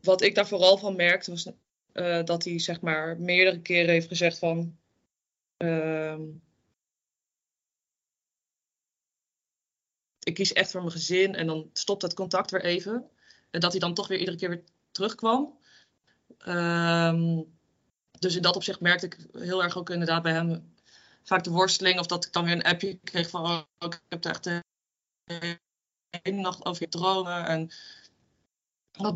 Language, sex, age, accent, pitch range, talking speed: Dutch, female, 20-39, Dutch, 170-185 Hz, 165 wpm